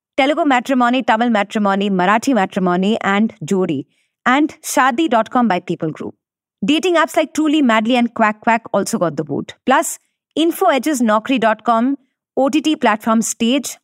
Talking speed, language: 135 wpm, English